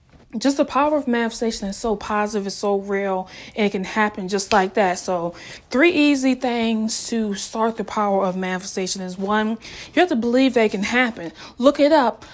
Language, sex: English, female